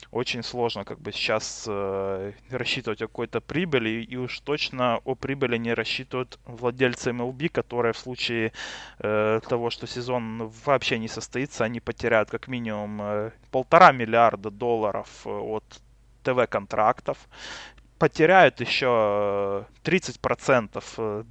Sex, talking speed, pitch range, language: male, 115 wpm, 110-130 Hz, Russian